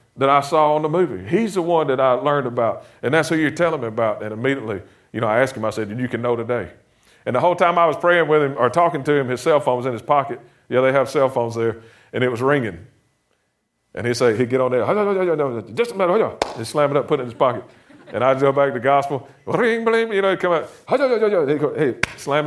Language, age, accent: English, 40-59, American